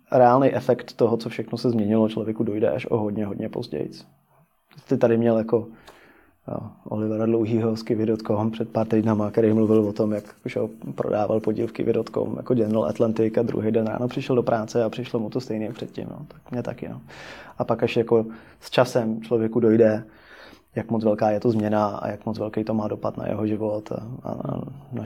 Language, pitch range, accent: Czech, 110-120 Hz, native